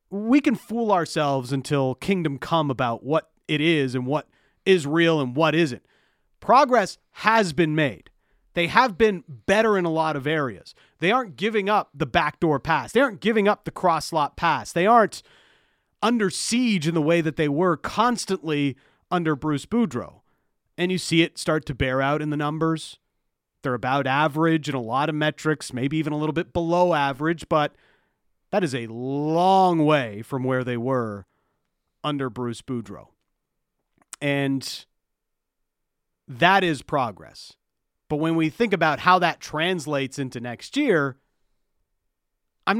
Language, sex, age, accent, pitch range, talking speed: English, male, 40-59, American, 140-195 Hz, 160 wpm